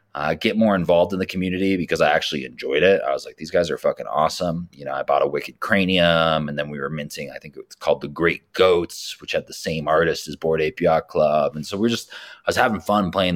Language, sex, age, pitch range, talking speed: English, male, 20-39, 80-95 Hz, 260 wpm